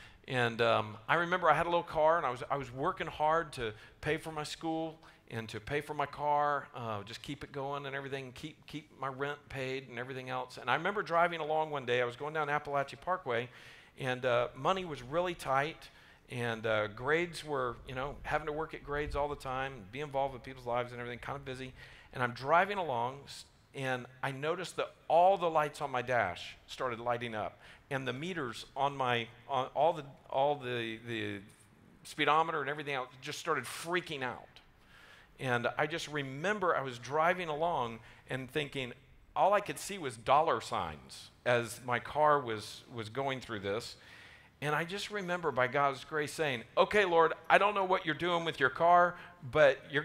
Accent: American